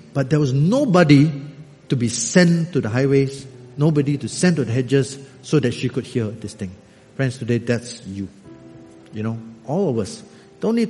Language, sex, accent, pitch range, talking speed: English, male, Malaysian, 125-180 Hz, 185 wpm